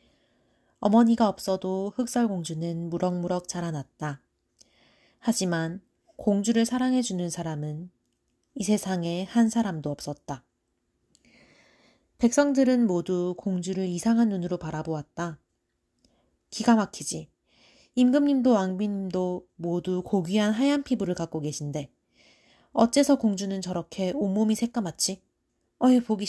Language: Korean